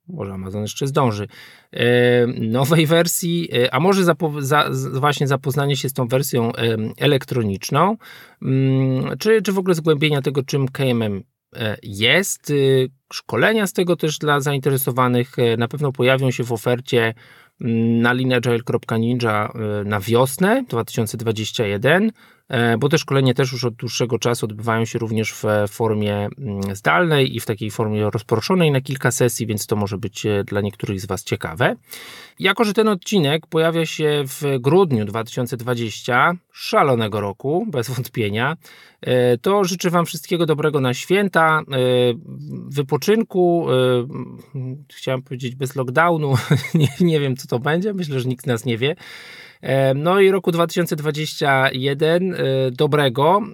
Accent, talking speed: native, 130 wpm